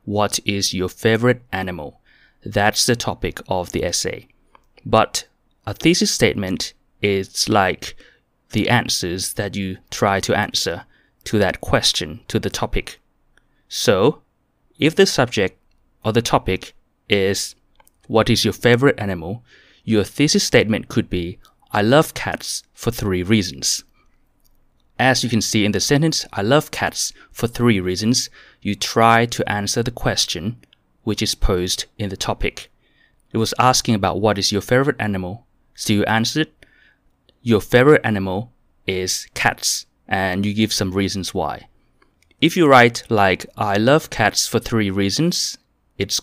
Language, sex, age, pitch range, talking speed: English, male, 20-39, 95-120 Hz, 145 wpm